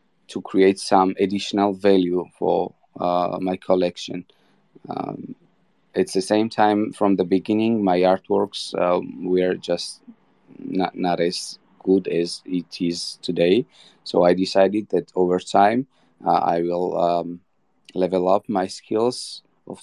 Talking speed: 135 wpm